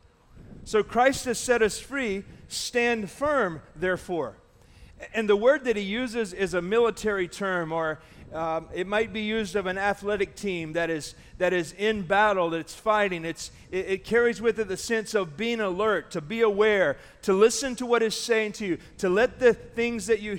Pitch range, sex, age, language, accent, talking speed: 175-225 Hz, male, 40-59, English, American, 190 wpm